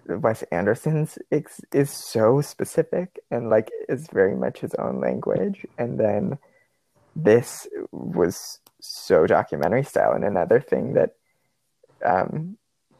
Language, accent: English, American